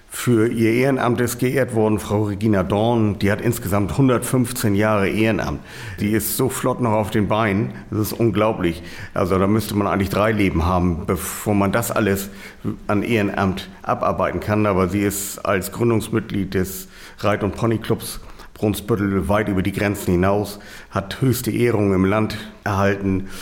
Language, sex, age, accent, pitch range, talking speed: German, male, 50-69, German, 95-115 Hz, 160 wpm